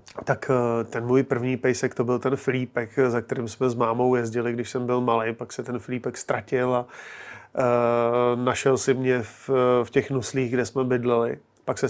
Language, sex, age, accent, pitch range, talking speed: Czech, male, 30-49, native, 120-130 Hz, 180 wpm